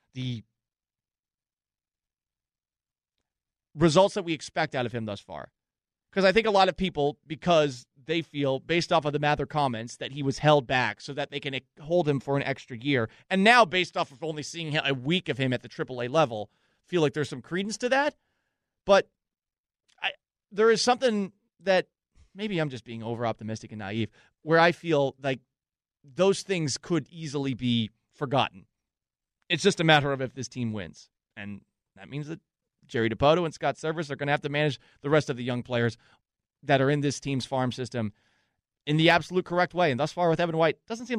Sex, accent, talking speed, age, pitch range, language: male, American, 195 wpm, 30-49, 120-165 Hz, English